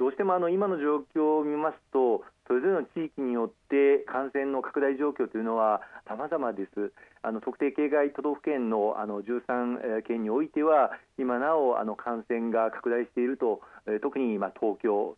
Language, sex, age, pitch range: Japanese, male, 40-59, 115-160 Hz